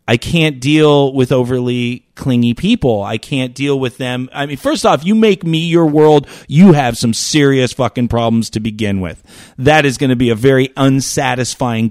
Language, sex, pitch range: English, male, 120-155 Hz